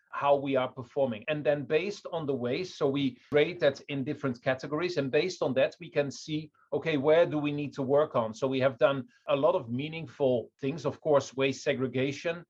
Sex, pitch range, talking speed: male, 125-150 Hz, 215 wpm